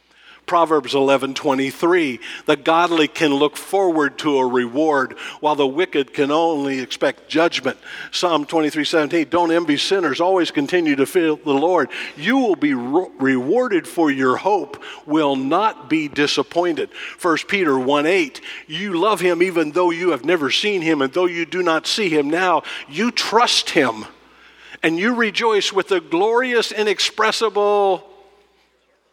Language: English